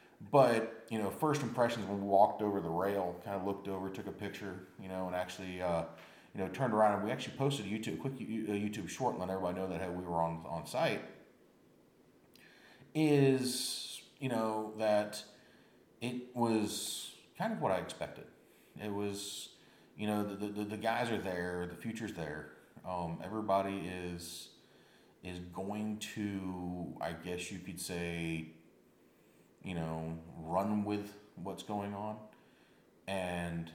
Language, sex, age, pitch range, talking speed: English, male, 30-49, 85-105 Hz, 160 wpm